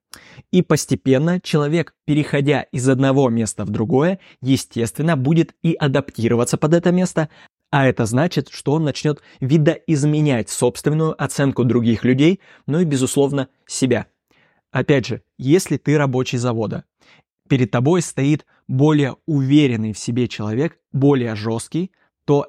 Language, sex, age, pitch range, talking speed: Russian, male, 20-39, 125-150 Hz, 130 wpm